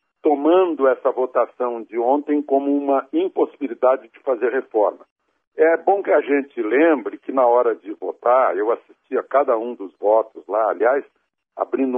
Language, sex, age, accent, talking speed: Portuguese, male, 60-79, Brazilian, 160 wpm